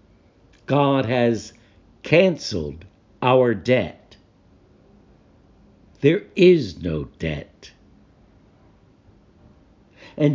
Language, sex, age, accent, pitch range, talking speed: English, male, 60-79, American, 95-150 Hz, 60 wpm